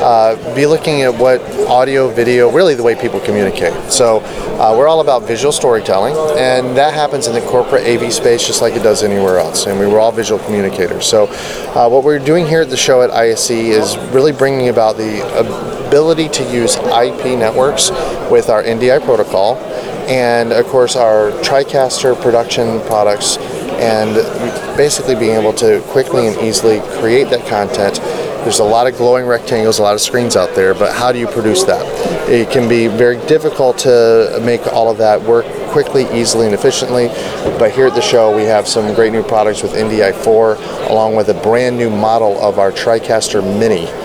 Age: 30-49